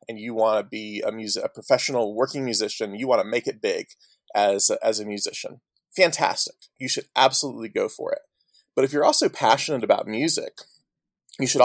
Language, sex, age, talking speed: English, male, 20-39, 190 wpm